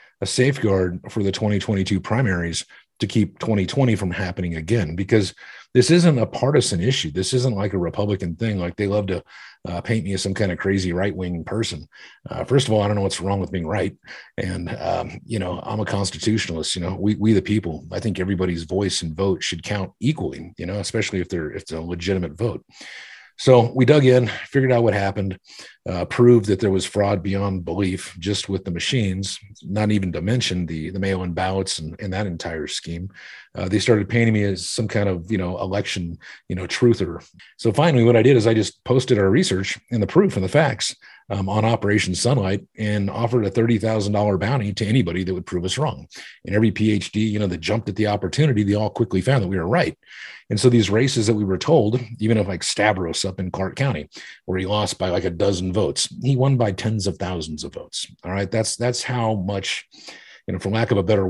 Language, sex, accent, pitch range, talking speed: English, male, American, 95-115 Hz, 225 wpm